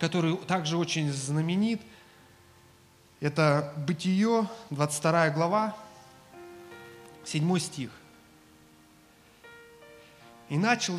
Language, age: Russian, 30-49